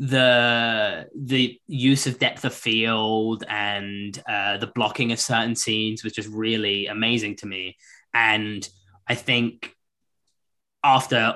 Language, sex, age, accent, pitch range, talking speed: English, male, 20-39, British, 100-120 Hz, 125 wpm